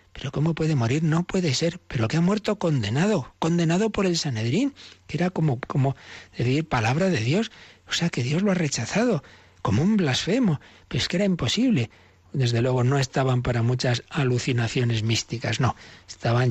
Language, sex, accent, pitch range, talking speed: Spanish, male, Spanish, 115-145 Hz, 180 wpm